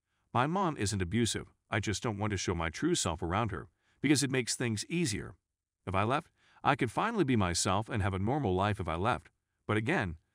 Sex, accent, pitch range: male, American, 90-115 Hz